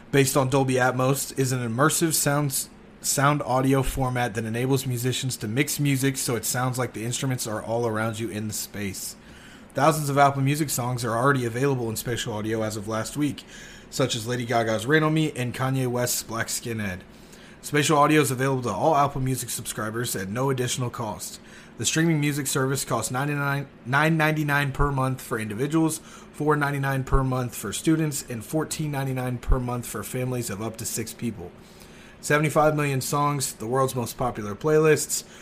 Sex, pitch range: male, 120-145 Hz